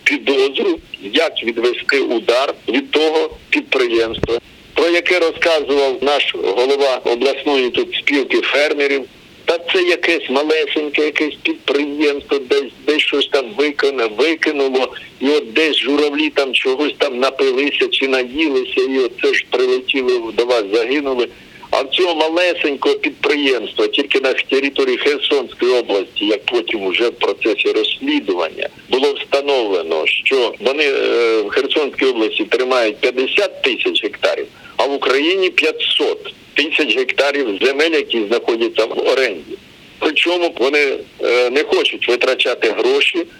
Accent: native